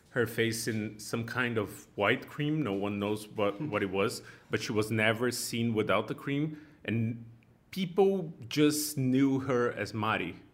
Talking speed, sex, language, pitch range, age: 170 wpm, male, English, 105-125 Hz, 30-49